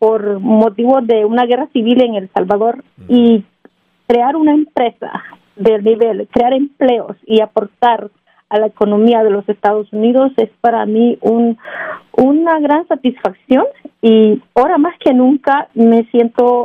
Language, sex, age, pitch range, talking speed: Spanish, female, 40-59, 215-260 Hz, 145 wpm